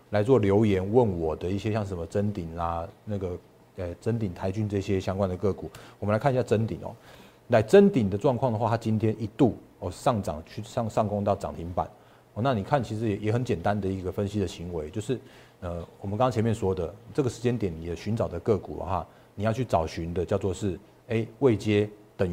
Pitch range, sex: 95-115 Hz, male